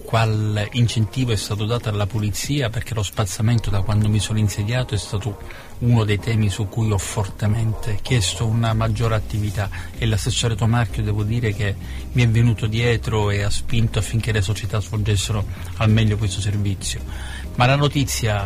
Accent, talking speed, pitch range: native, 170 wpm, 100-115 Hz